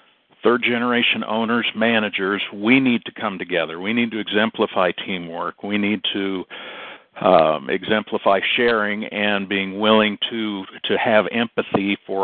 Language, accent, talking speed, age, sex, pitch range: English, American, 130 wpm, 60-79, male, 95-115 Hz